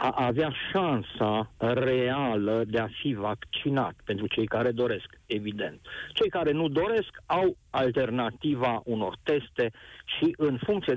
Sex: male